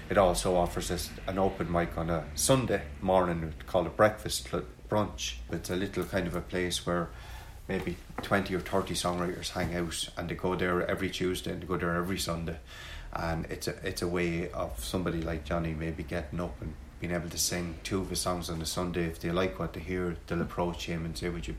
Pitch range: 85-95 Hz